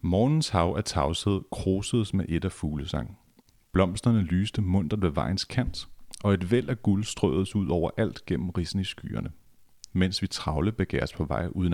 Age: 40-59